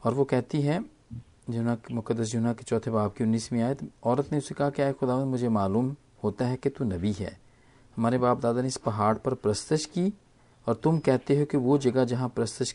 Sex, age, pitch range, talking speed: male, 40-59, 105-135 Hz, 215 wpm